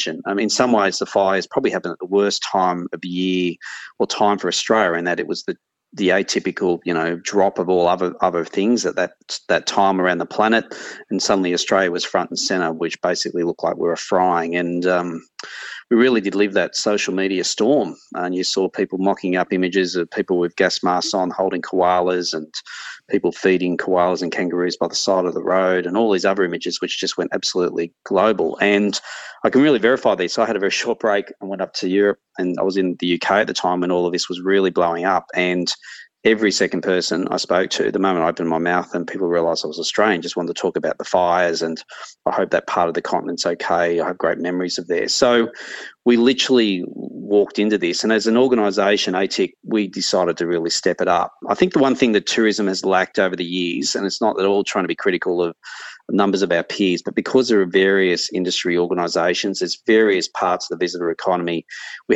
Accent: Australian